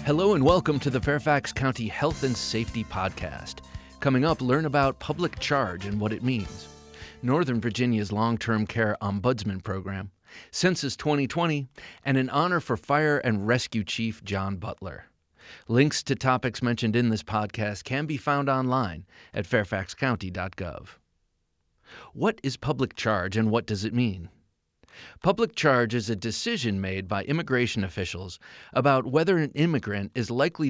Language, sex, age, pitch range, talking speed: English, male, 30-49, 100-130 Hz, 150 wpm